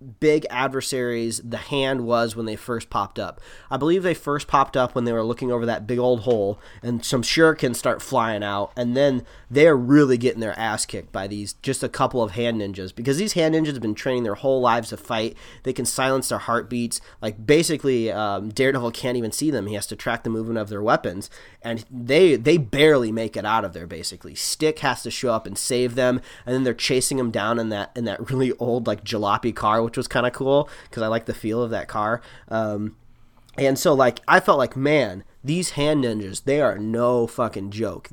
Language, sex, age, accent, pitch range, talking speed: English, male, 30-49, American, 110-135 Hz, 225 wpm